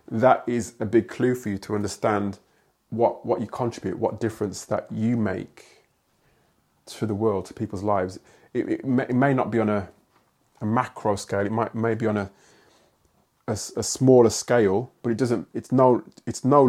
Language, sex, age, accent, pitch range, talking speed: English, male, 30-49, British, 105-120 Hz, 190 wpm